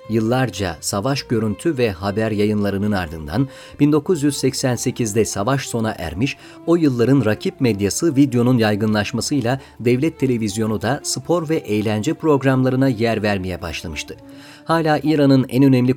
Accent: native